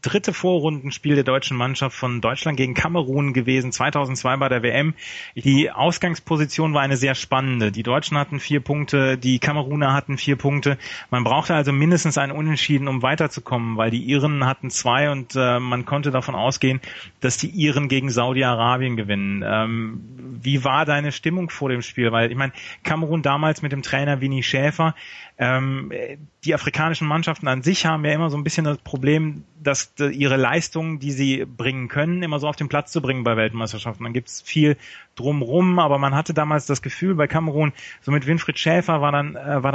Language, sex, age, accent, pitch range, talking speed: German, male, 30-49, German, 130-150 Hz, 185 wpm